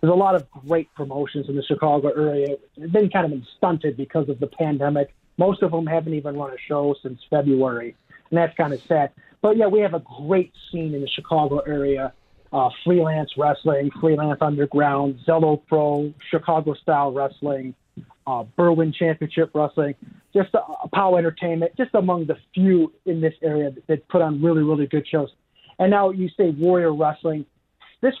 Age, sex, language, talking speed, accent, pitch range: 30-49, male, English, 180 wpm, American, 150-185 Hz